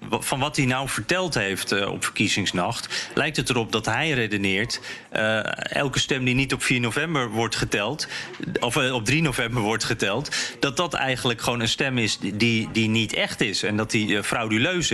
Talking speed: 195 wpm